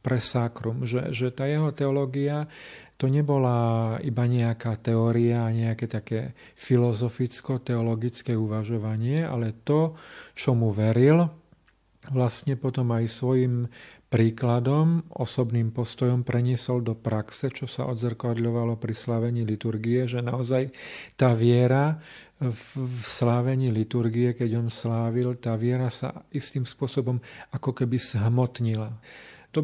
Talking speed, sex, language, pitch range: 110 wpm, male, Slovak, 115-130 Hz